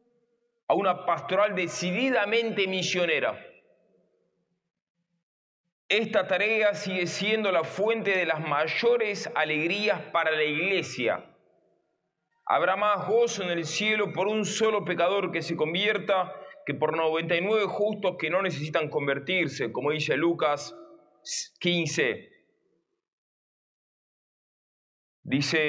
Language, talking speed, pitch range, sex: Spanish, 105 wpm, 160-220 Hz, male